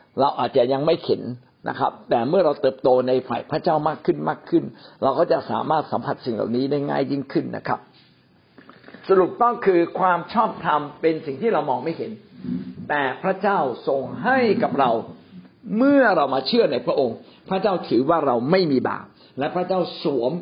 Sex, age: male, 60-79